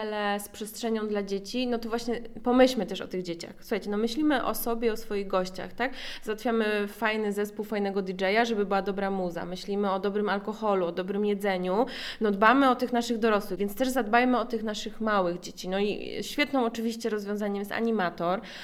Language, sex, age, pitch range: Polish, female, 20-39, 200-230 Hz